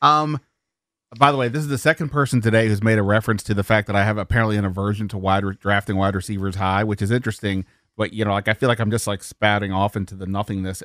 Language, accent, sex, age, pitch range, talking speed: English, American, male, 30-49, 100-130 Hz, 265 wpm